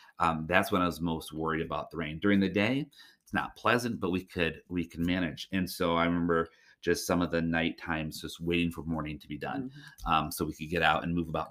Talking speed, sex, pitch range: 250 wpm, male, 80-90 Hz